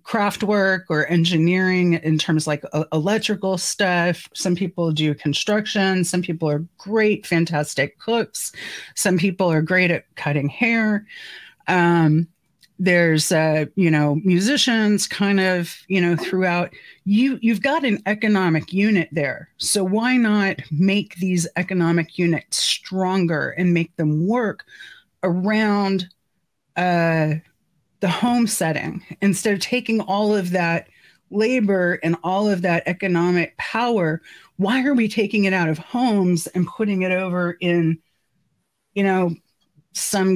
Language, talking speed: English, 140 wpm